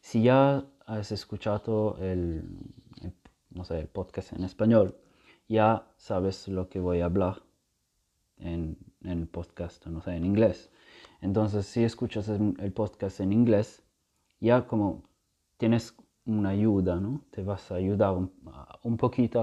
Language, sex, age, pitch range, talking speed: English, male, 30-49, 90-110 Hz, 145 wpm